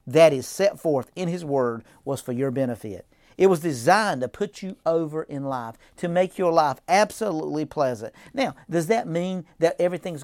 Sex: male